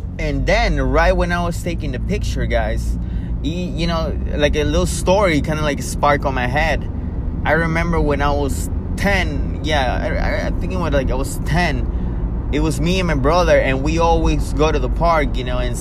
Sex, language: male, English